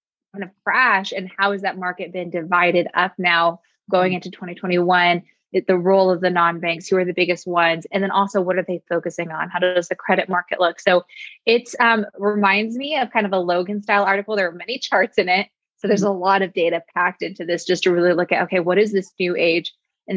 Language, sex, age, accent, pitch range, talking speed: English, female, 20-39, American, 180-205 Hz, 235 wpm